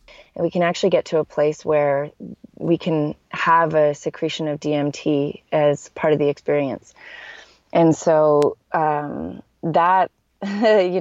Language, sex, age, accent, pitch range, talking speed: English, female, 20-39, American, 145-165 Hz, 135 wpm